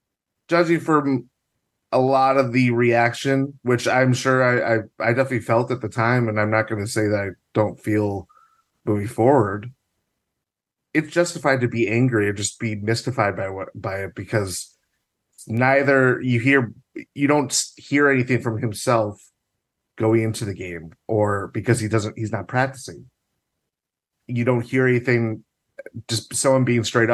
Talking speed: 155 wpm